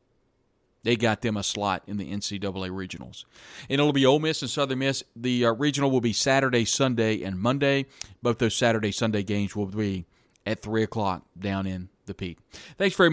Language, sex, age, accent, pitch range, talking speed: English, male, 40-59, American, 100-120 Hz, 190 wpm